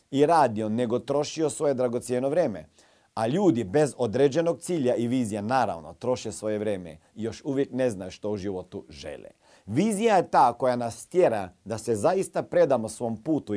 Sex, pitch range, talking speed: male, 125-180 Hz, 175 wpm